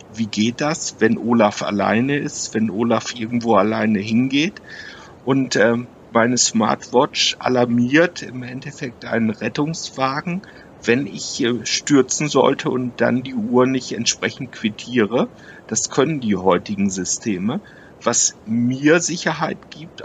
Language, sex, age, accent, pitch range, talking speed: German, male, 60-79, German, 110-135 Hz, 120 wpm